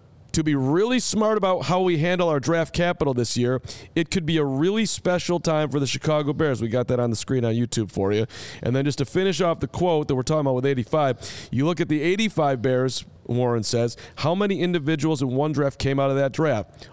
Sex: male